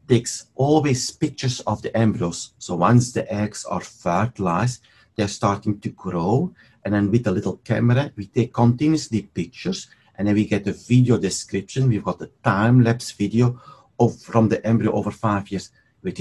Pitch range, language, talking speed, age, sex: 100-125 Hz, English, 180 wpm, 50-69, male